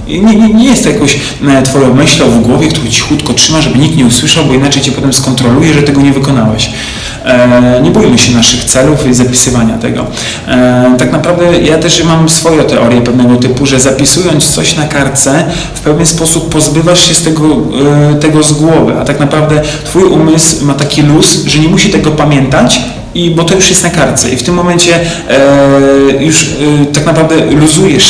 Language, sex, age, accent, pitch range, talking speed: Polish, male, 40-59, native, 125-155 Hz, 195 wpm